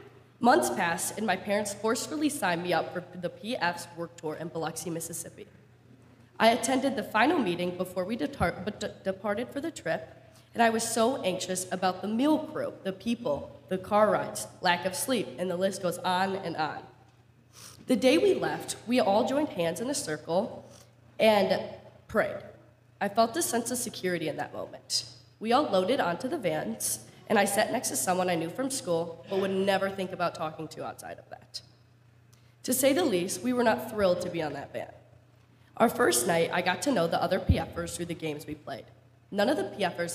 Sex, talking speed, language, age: female, 195 wpm, English, 20-39